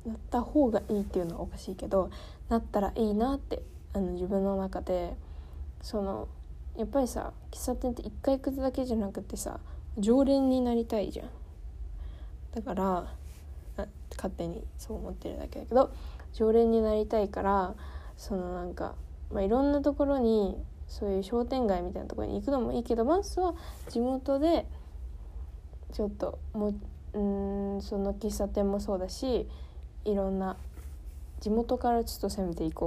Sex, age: female, 20-39